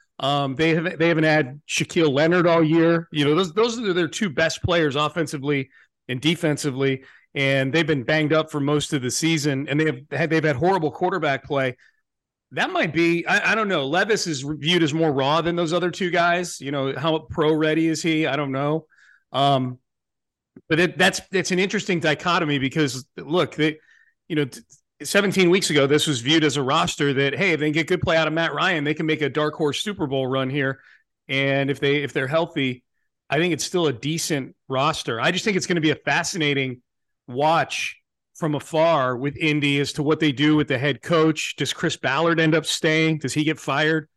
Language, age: English, 40-59